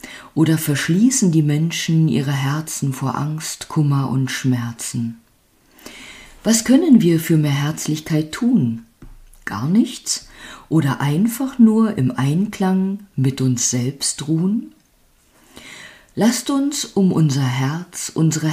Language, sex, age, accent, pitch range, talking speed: German, female, 50-69, German, 130-215 Hz, 115 wpm